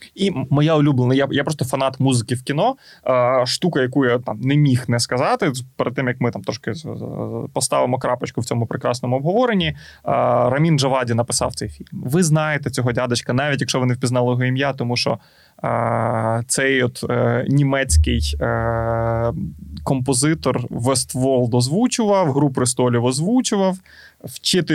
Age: 20-39